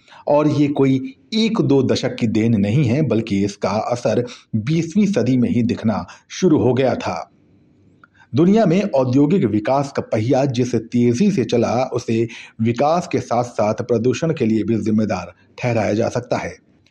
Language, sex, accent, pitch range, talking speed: Hindi, male, native, 110-145 Hz, 165 wpm